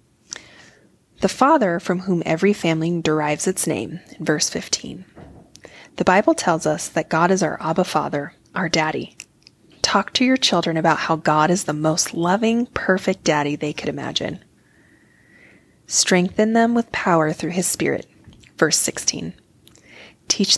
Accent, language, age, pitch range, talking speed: American, English, 20-39, 155-195 Hz, 145 wpm